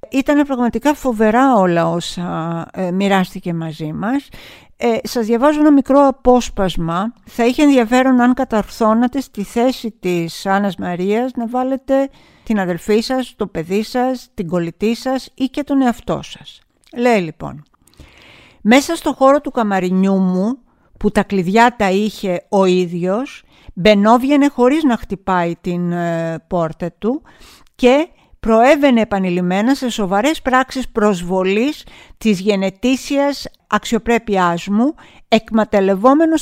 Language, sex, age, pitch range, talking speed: Greek, female, 50-69, 190-255 Hz, 125 wpm